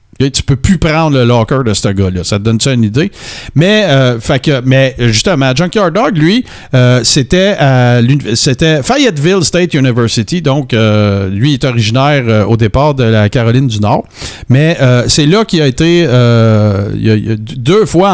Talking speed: 195 wpm